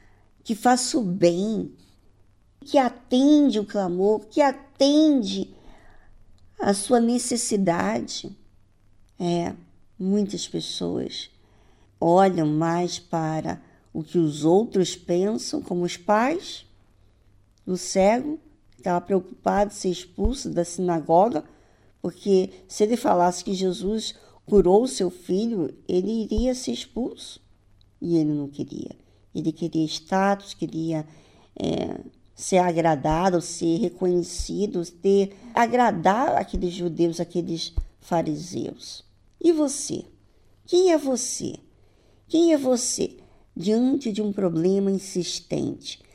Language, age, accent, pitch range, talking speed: Portuguese, 50-69, Brazilian, 155-225 Hz, 105 wpm